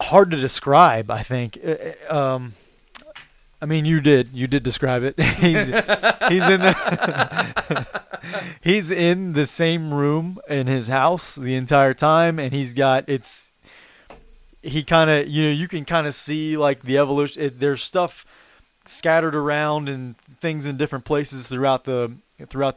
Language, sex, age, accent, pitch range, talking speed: English, male, 30-49, American, 125-150 Hz, 155 wpm